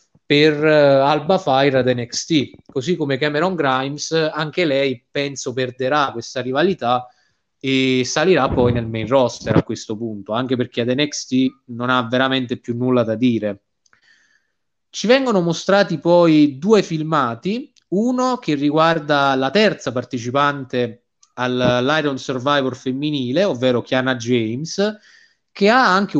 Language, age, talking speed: Italian, 20-39, 130 wpm